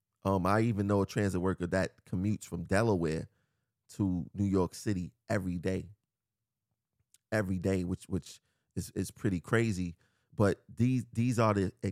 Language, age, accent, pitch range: English, 30-49, American, 95-115 Hz